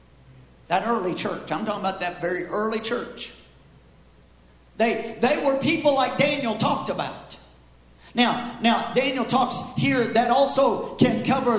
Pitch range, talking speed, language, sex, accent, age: 200-255 Hz, 140 wpm, English, male, American, 50-69